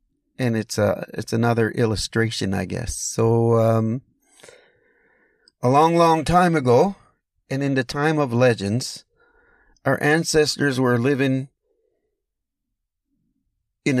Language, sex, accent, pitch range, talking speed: English, male, American, 115-155 Hz, 110 wpm